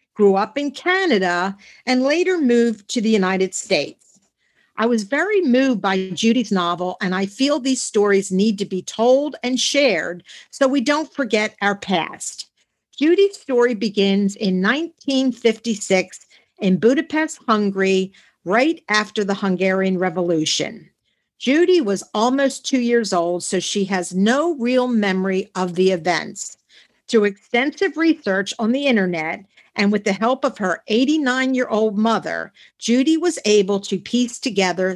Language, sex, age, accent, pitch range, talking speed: English, female, 50-69, American, 190-265 Hz, 140 wpm